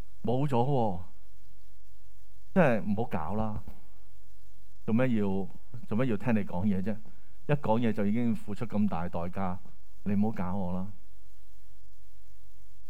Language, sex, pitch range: Chinese, male, 95-110 Hz